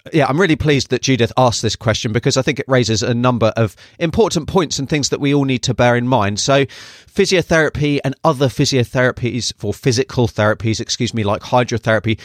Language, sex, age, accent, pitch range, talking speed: English, male, 30-49, British, 105-130 Hz, 200 wpm